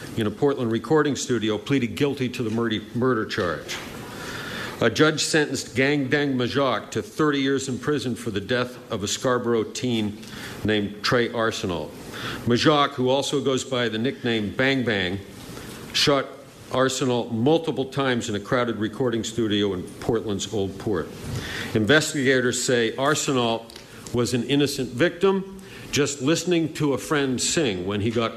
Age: 50-69